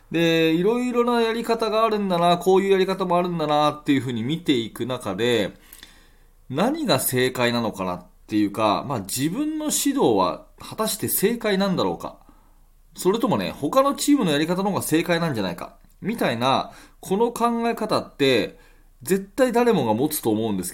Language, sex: Japanese, male